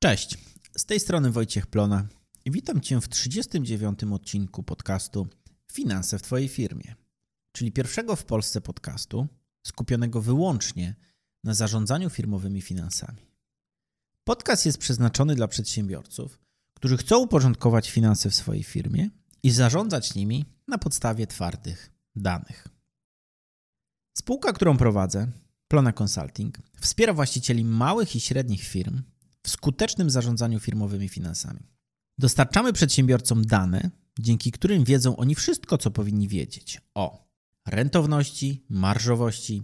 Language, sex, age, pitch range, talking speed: Polish, male, 30-49, 105-140 Hz, 115 wpm